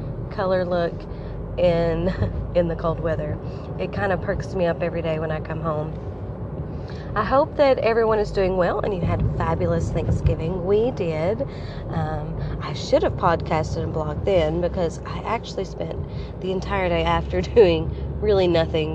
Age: 30-49